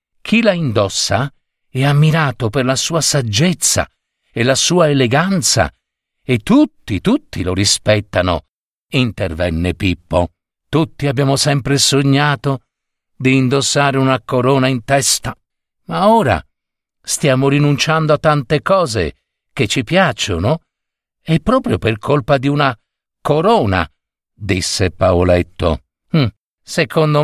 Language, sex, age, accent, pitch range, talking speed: Italian, male, 50-69, native, 110-160 Hz, 110 wpm